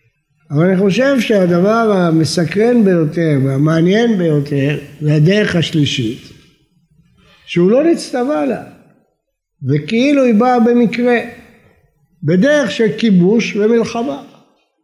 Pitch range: 165-230 Hz